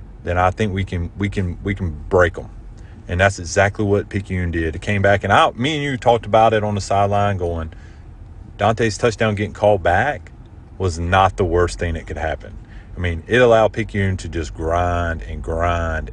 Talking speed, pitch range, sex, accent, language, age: 210 wpm, 90-115 Hz, male, American, English, 30-49